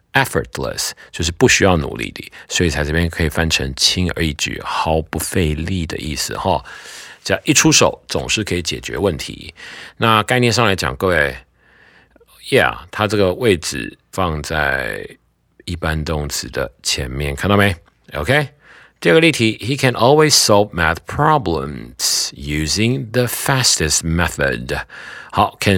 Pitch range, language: 80-110 Hz, Chinese